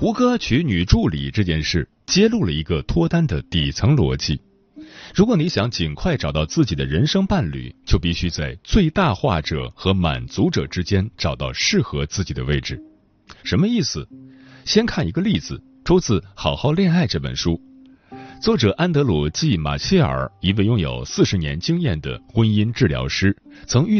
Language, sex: Chinese, male